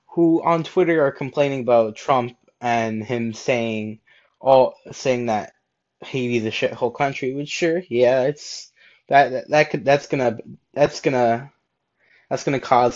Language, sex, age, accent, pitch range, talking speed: English, male, 20-39, American, 115-140 Hz, 150 wpm